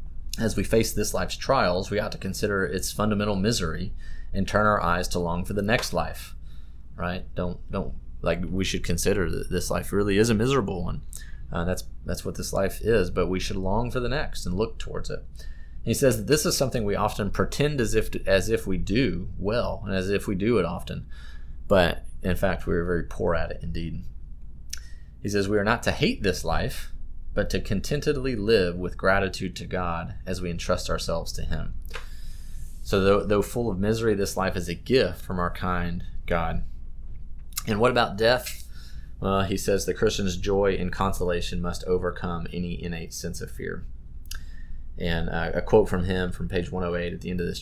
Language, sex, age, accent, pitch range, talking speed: English, male, 30-49, American, 85-100 Hz, 205 wpm